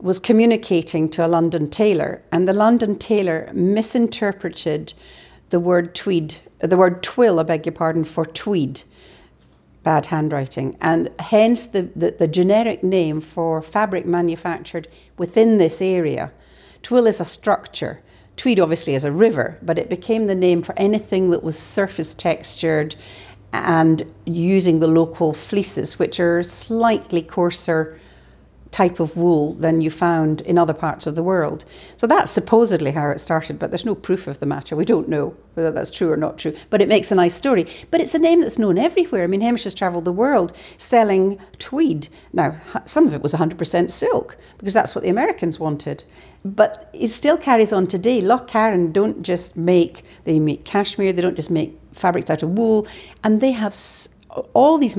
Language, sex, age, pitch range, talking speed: English, female, 60-79, 160-215 Hz, 175 wpm